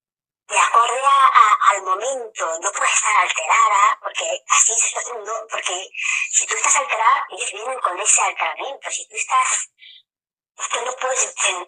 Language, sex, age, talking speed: Spanish, male, 20-39, 150 wpm